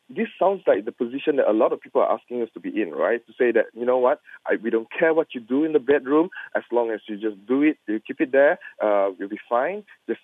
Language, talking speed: English, 285 wpm